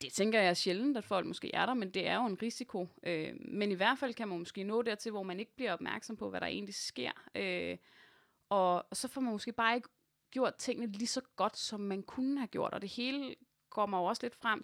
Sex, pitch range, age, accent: female, 180-245 Hz, 20-39, native